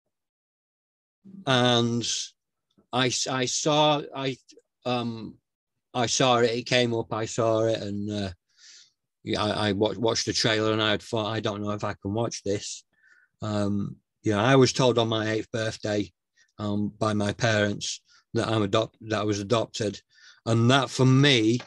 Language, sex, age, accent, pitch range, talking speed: English, male, 40-59, British, 105-120 Hz, 160 wpm